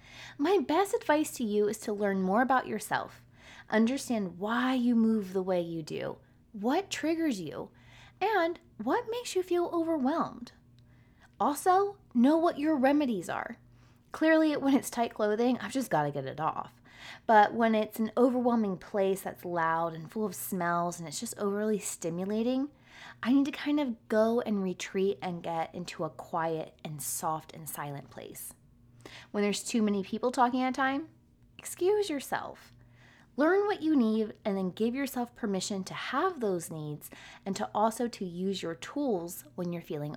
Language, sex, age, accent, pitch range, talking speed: English, female, 20-39, American, 170-255 Hz, 170 wpm